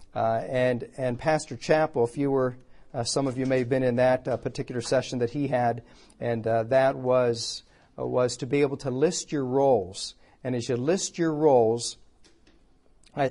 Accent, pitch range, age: American, 125-150 Hz, 50-69